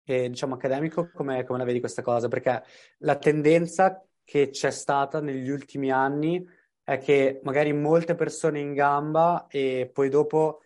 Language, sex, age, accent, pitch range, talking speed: Italian, male, 20-39, native, 120-145 Hz, 150 wpm